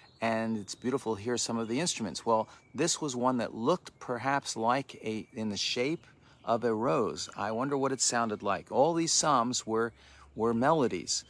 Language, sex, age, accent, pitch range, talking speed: English, male, 50-69, American, 110-130 Hz, 190 wpm